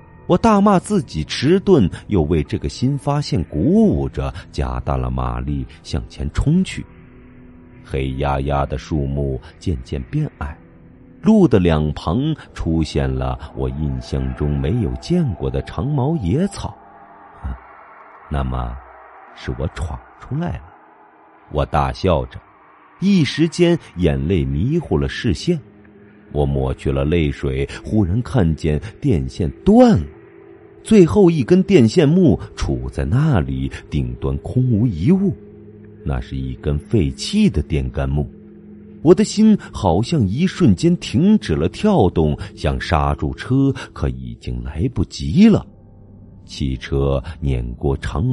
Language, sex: Chinese, male